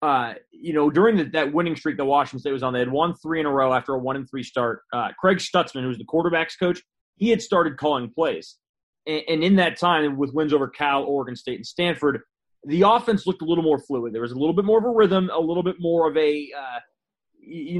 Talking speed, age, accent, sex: 250 wpm, 30-49, American, male